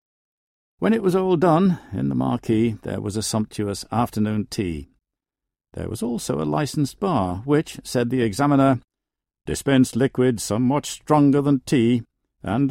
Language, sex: English, male